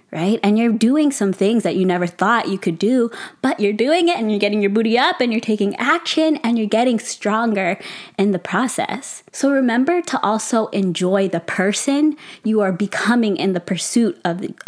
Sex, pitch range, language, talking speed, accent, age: female, 185-240 Hz, English, 200 wpm, American, 20-39